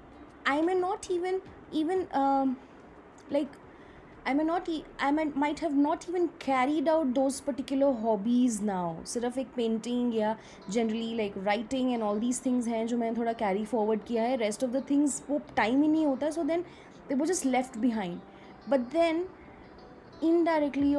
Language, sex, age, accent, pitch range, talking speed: Hindi, female, 20-39, native, 220-285 Hz, 185 wpm